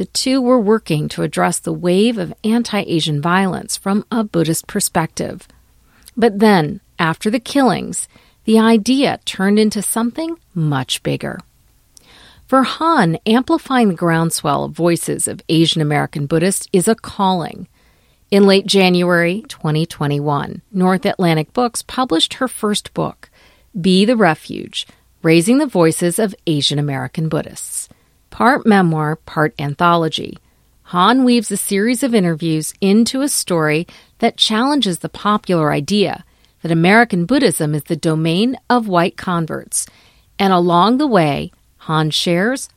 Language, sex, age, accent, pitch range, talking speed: English, female, 40-59, American, 160-225 Hz, 135 wpm